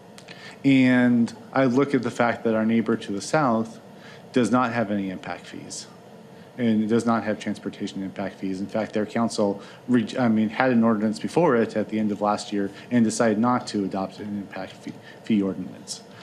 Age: 40-59